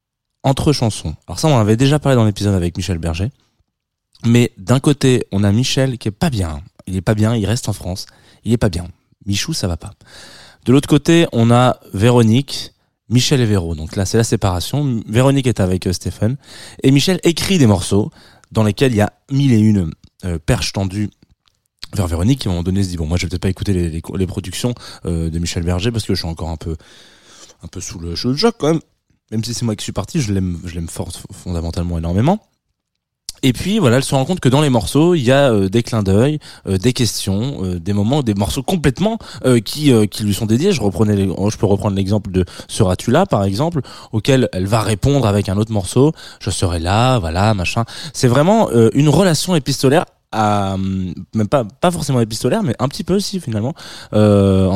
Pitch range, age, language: 95-130 Hz, 20-39, French